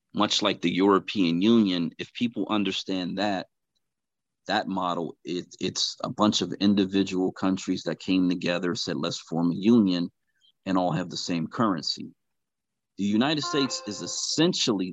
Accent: American